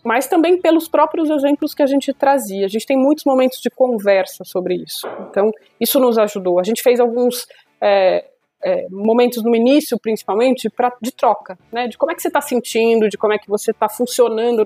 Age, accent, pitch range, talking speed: 20-39, Brazilian, 210-265 Hz, 205 wpm